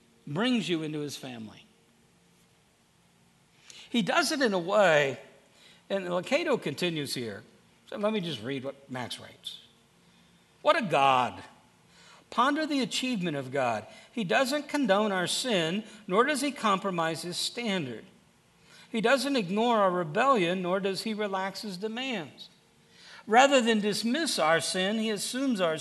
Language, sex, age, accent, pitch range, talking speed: English, male, 60-79, American, 180-235 Hz, 140 wpm